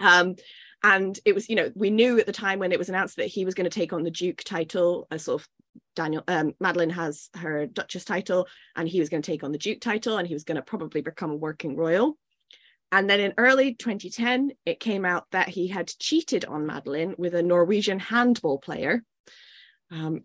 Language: English